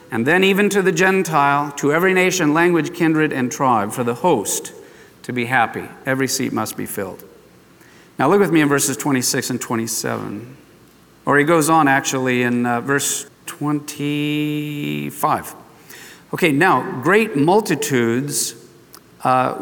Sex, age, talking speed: male, 50-69, 145 wpm